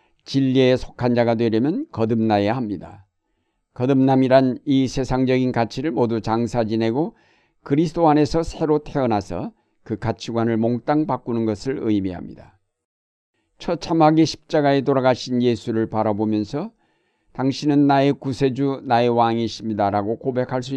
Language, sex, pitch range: Korean, male, 115-140 Hz